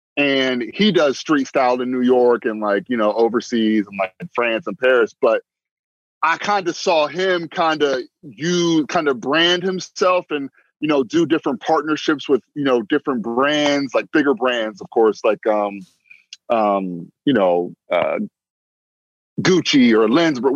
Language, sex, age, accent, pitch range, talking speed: English, male, 20-39, American, 130-175 Hz, 165 wpm